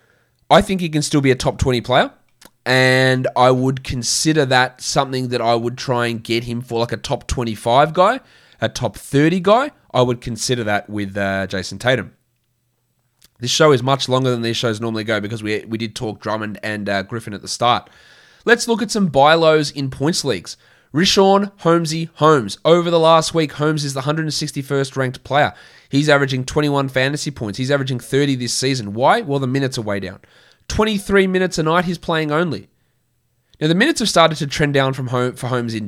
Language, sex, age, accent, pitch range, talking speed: English, male, 20-39, Australian, 120-150 Hz, 205 wpm